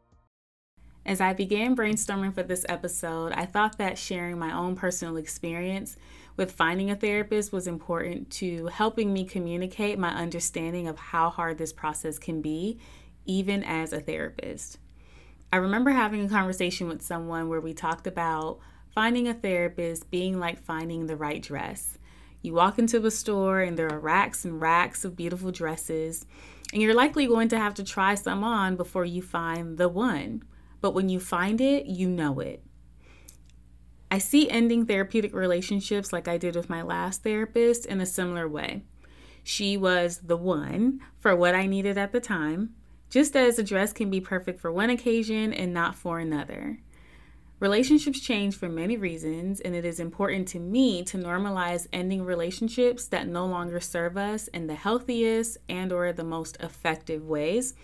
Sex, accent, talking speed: female, American, 170 wpm